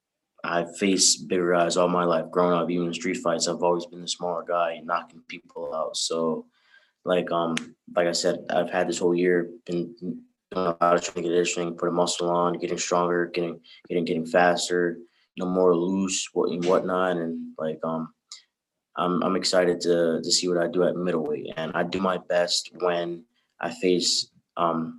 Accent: American